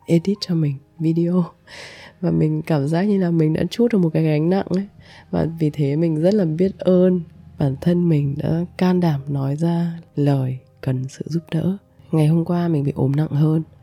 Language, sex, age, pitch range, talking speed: Vietnamese, female, 20-39, 135-165 Hz, 210 wpm